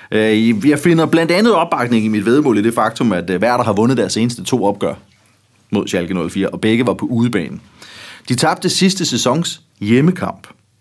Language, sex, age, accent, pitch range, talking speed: Danish, male, 30-49, native, 105-135 Hz, 180 wpm